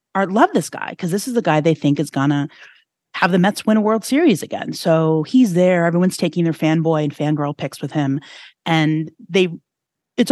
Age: 30-49